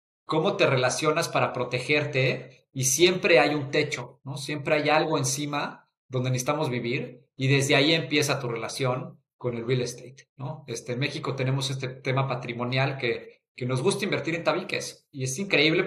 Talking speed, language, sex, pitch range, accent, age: 175 wpm, Spanish, male, 125-155 Hz, Mexican, 40-59